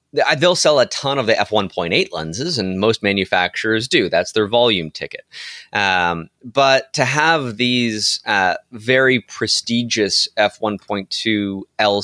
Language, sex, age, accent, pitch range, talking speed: English, male, 30-49, American, 100-130 Hz, 130 wpm